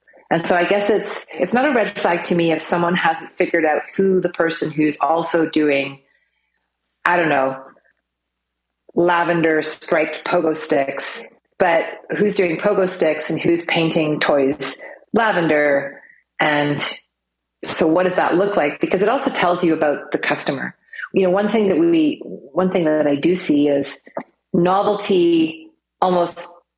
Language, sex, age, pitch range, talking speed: English, female, 40-59, 150-185 Hz, 155 wpm